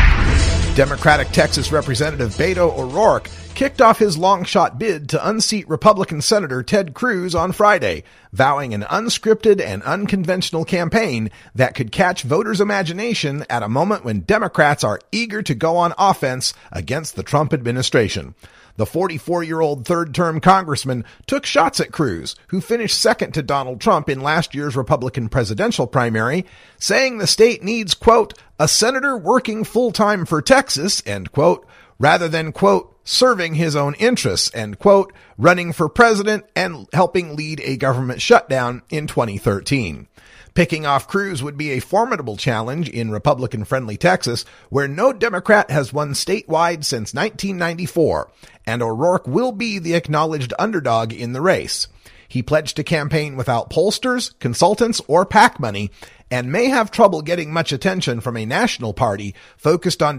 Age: 40-59